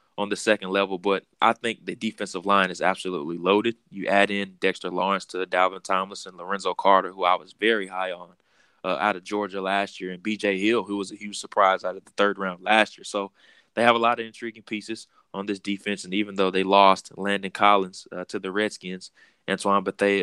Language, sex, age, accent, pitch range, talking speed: English, male, 20-39, American, 95-100 Hz, 220 wpm